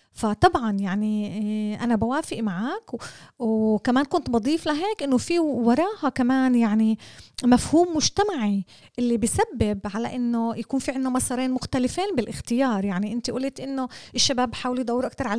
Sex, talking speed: female, 135 wpm